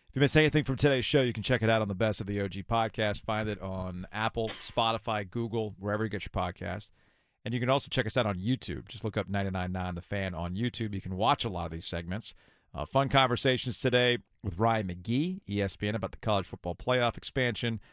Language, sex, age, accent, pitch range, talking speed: English, male, 40-59, American, 95-125 Hz, 230 wpm